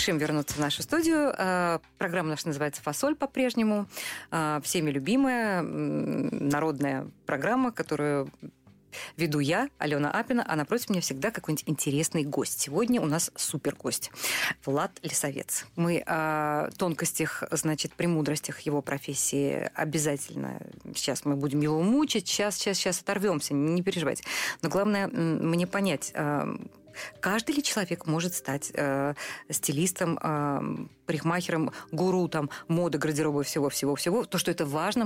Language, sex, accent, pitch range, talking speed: Russian, female, native, 150-200 Hz, 125 wpm